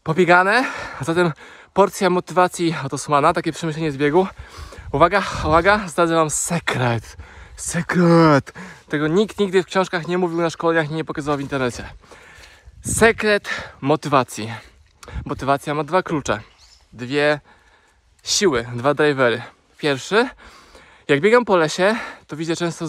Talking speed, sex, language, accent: 125 wpm, male, Polish, native